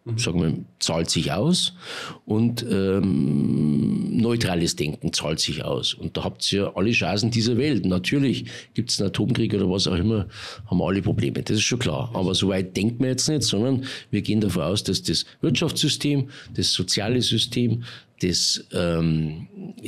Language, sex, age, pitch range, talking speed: German, male, 50-69, 105-140 Hz, 170 wpm